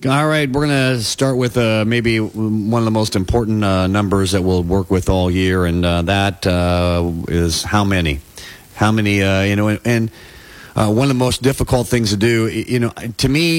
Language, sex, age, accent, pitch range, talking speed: English, male, 40-59, American, 100-125 Hz, 210 wpm